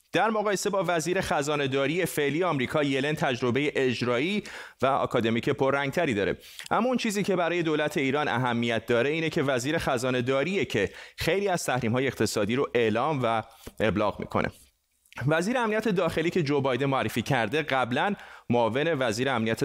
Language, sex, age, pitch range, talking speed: Persian, male, 30-49, 125-160 Hz, 150 wpm